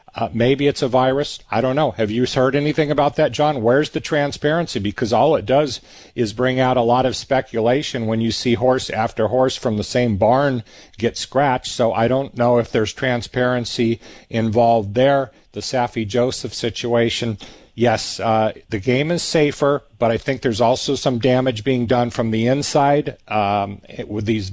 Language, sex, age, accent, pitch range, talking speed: English, male, 40-59, American, 115-135 Hz, 185 wpm